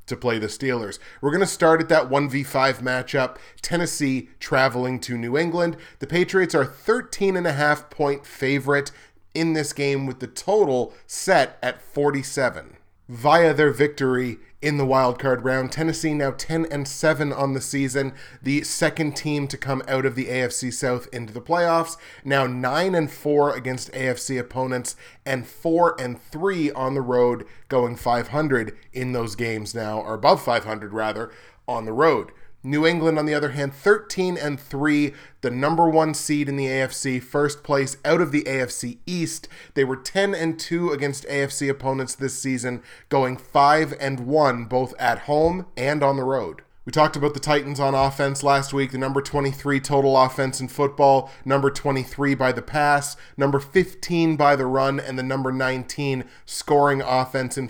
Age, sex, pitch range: 30-49, male, 130-150 Hz